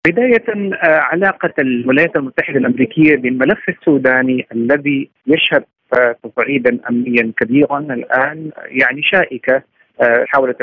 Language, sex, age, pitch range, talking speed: Arabic, male, 50-69, 125-170 Hz, 90 wpm